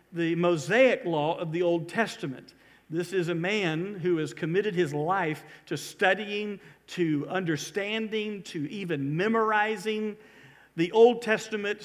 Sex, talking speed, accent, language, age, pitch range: male, 130 wpm, American, English, 50-69, 165-215 Hz